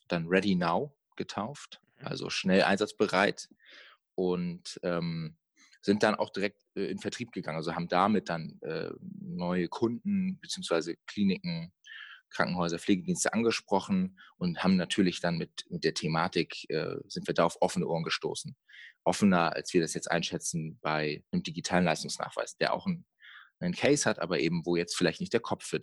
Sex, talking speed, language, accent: male, 160 wpm, German, German